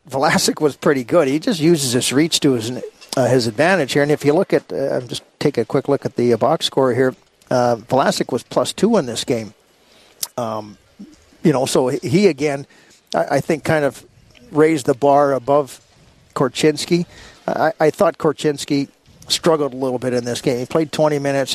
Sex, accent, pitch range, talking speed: male, American, 130-155 Hz, 205 wpm